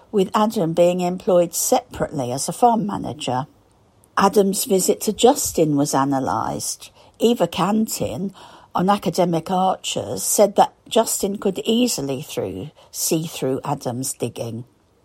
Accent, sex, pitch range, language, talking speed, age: British, female, 140-195 Hz, English, 115 wpm, 50-69